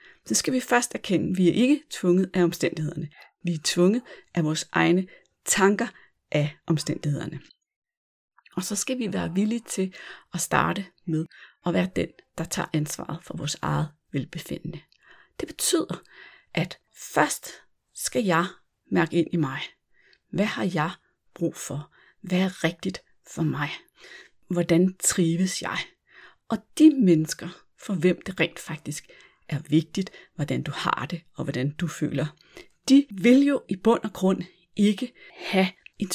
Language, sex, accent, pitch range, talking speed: Danish, female, native, 165-200 Hz, 155 wpm